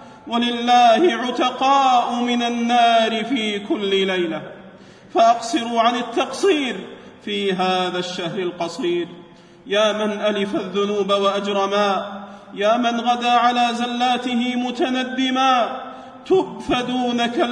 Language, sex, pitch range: Arabic, male, 215-250 Hz